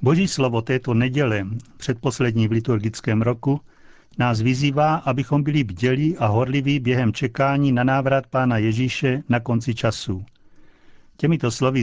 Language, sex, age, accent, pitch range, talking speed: Czech, male, 60-79, native, 115-140 Hz, 135 wpm